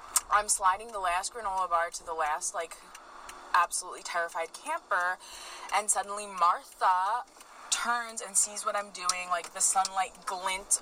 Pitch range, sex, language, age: 180-235 Hz, female, English, 20-39